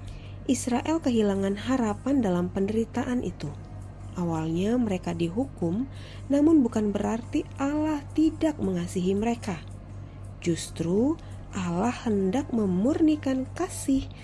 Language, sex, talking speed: Indonesian, female, 90 wpm